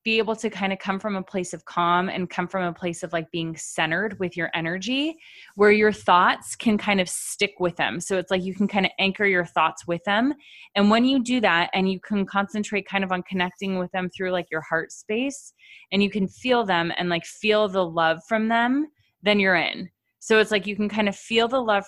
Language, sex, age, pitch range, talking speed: English, female, 20-39, 175-210 Hz, 245 wpm